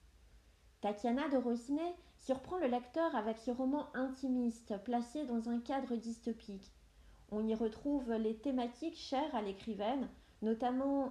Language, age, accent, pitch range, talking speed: French, 40-59, French, 215-275 Hz, 130 wpm